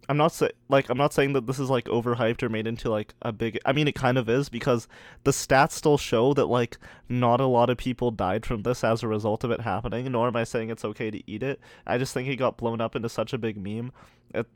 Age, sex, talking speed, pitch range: 20-39, male, 275 wpm, 110-130 Hz